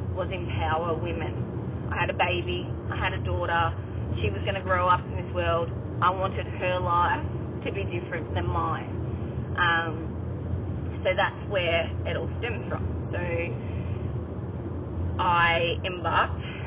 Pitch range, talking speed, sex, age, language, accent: 95-115 Hz, 145 wpm, female, 20-39, English, Australian